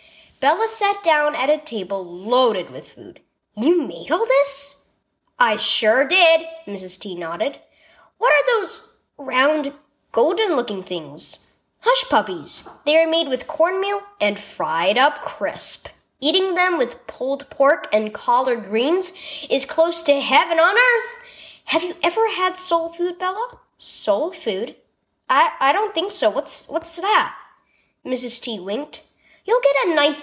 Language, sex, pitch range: English, female, 255-350 Hz